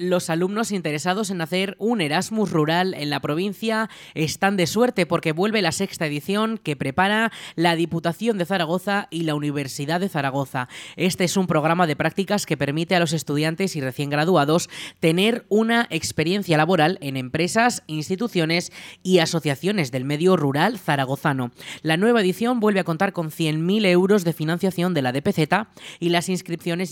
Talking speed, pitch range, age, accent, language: 165 wpm, 150-190 Hz, 20-39, Spanish, Spanish